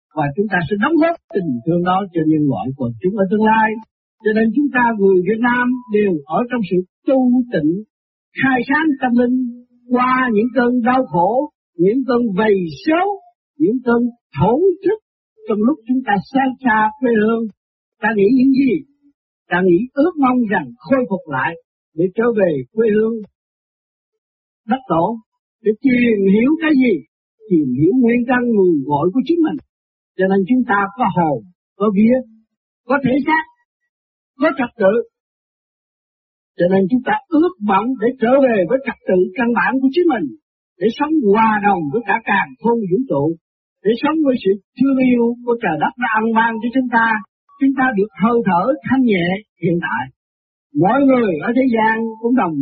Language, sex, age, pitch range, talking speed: Vietnamese, male, 50-69, 195-260 Hz, 180 wpm